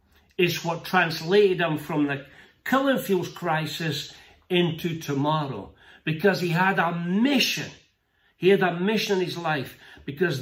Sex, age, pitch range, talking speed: male, 60-79, 145-200 Hz, 130 wpm